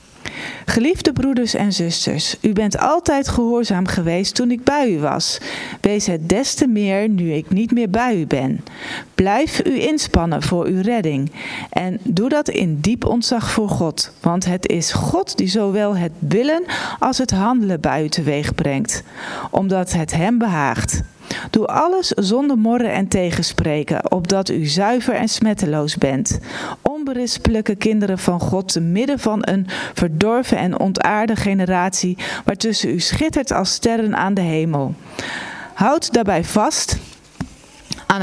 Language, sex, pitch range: Dutch, female, 180-240 Hz